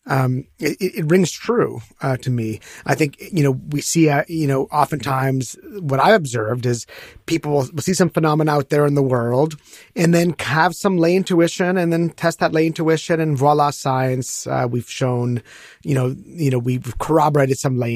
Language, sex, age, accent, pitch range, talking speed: English, male, 30-49, American, 135-170 Hz, 195 wpm